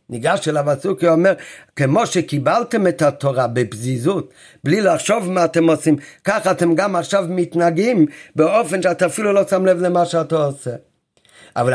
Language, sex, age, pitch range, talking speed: Hebrew, male, 50-69, 150-205 Hz, 155 wpm